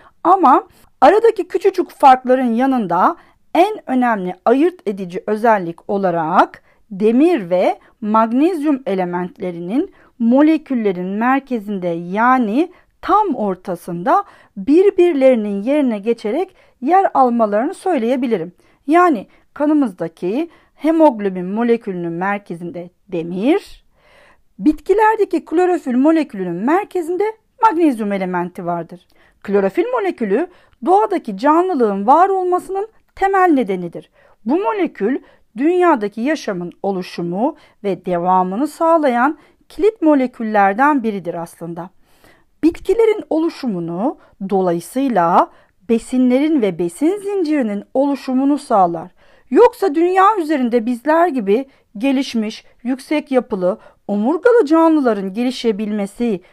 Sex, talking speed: female, 85 wpm